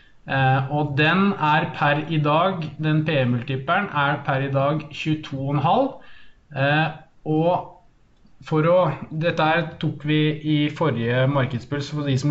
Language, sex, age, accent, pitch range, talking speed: English, male, 20-39, Norwegian, 135-155 Hz, 130 wpm